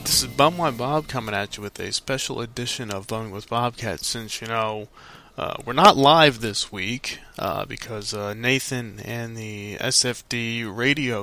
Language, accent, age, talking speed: English, American, 20-39, 175 wpm